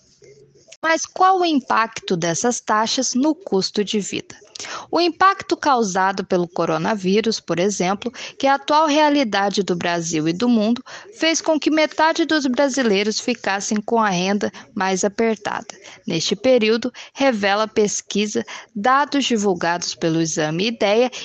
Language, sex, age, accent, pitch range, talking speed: Portuguese, female, 10-29, Brazilian, 205-295 Hz, 135 wpm